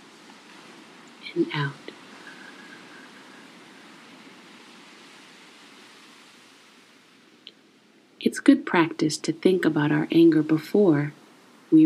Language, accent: English, American